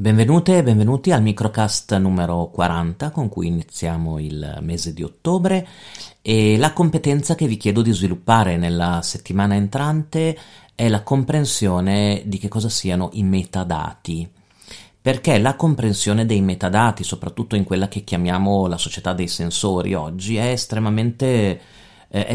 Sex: male